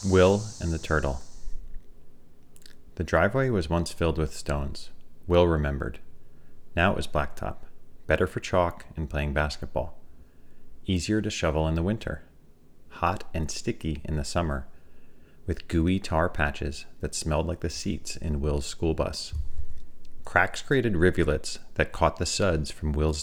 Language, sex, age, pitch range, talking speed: English, male, 30-49, 75-85 Hz, 145 wpm